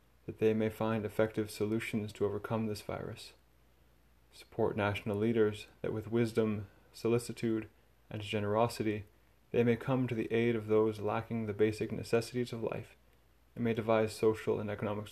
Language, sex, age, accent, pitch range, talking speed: English, male, 20-39, American, 105-115 Hz, 155 wpm